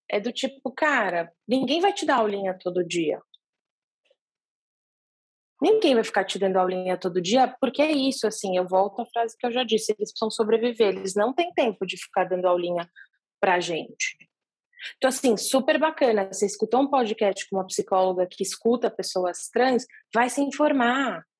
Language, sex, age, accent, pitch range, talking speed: Portuguese, female, 20-39, Brazilian, 195-270 Hz, 175 wpm